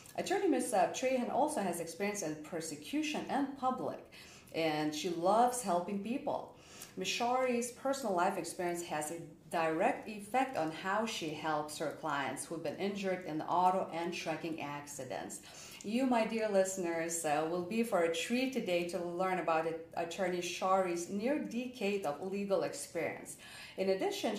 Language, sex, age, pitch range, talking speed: English, female, 40-59, 170-245 Hz, 155 wpm